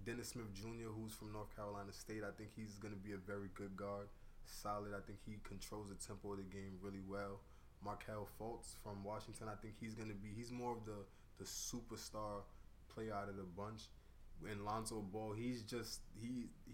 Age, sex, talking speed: 20-39, male, 195 wpm